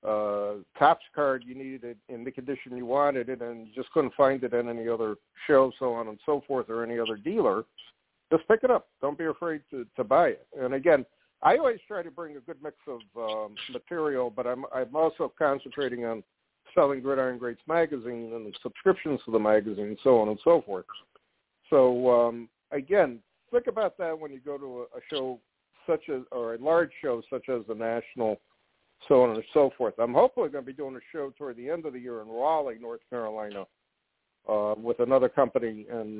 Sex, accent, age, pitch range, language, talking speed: male, American, 60-79, 115-145 Hz, English, 210 wpm